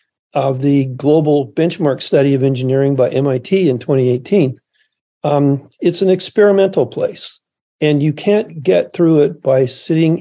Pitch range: 140-175 Hz